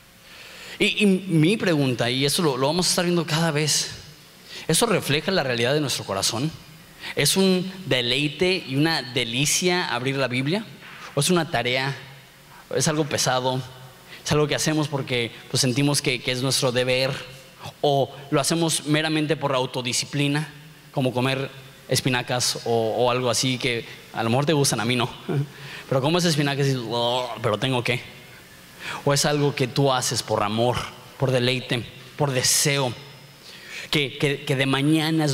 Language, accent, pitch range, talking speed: Spanish, Mexican, 130-165 Hz, 165 wpm